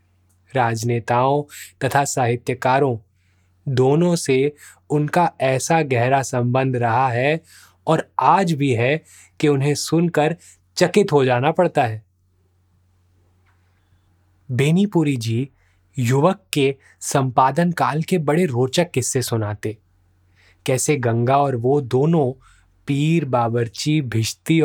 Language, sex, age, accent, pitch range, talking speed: Hindi, male, 20-39, native, 110-155 Hz, 100 wpm